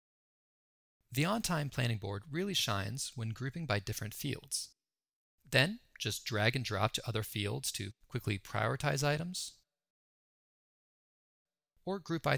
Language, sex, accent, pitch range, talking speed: English, male, American, 110-150 Hz, 125 wpm